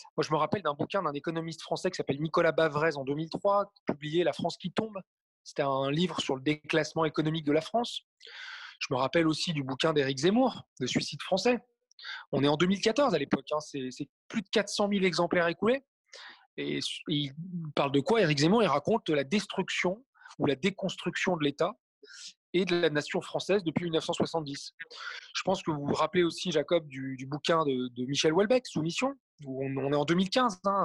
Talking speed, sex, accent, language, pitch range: 205 wpm, male, French, French, 150-200 Hz